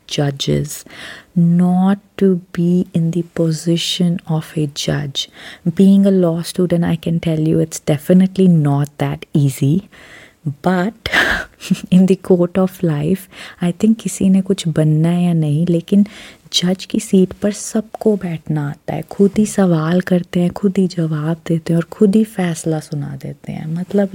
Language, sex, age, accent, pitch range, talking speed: Hindi, female, 30-49, native, 165-200 Hz, 160 wpm